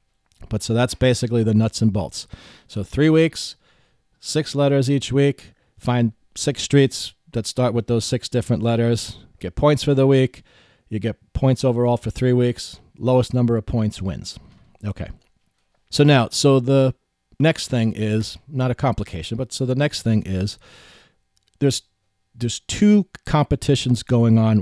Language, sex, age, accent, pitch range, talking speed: English, male, 40-59, American, 105-130 Hz, 160 wpm